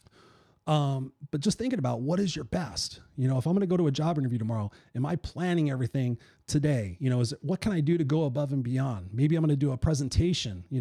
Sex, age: male, 30-49